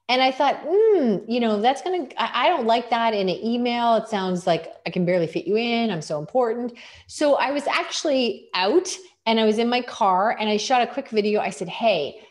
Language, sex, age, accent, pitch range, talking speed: English, female, 30-49, American, 180-235 Hz, 230 wpm